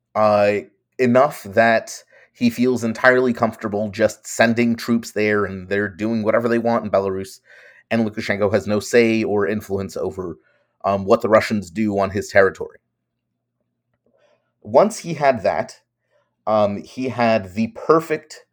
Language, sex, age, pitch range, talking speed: English, male, 30-49, 105-125 Hz, 145 wpm